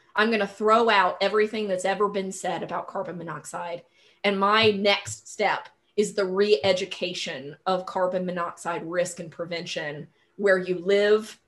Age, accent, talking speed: 20-39, American, 150 wpm